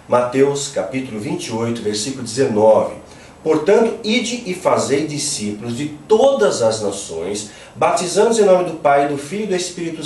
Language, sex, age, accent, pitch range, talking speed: Portuguese, male, 40-59, Brazilian, 145-215 Hz, 145 wpm